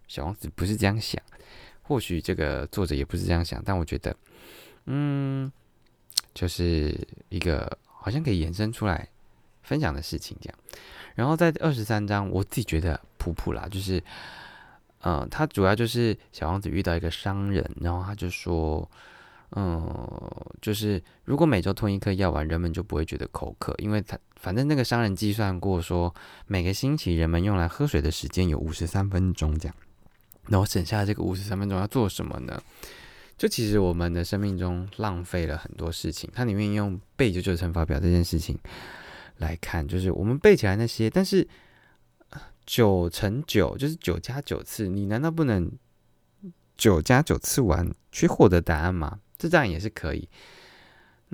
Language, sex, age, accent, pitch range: Chinese, male, 20-39, native, 85-110 Hz